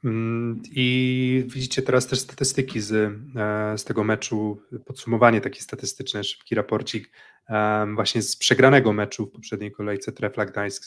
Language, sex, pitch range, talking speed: Polish, male, 110-130 Hz, 125 wpm